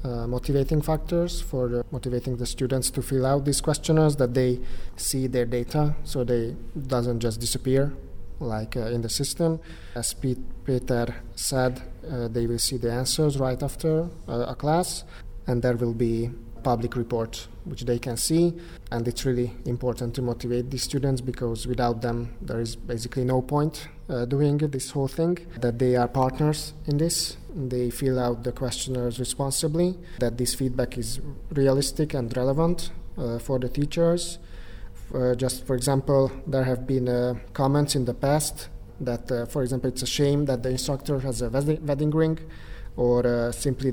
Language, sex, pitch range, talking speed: Hungarian, male, 120-140 Hz, 170 wpm